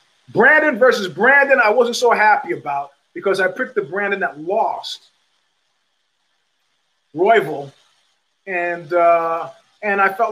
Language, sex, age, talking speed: English, male, 30-49, 120 wpm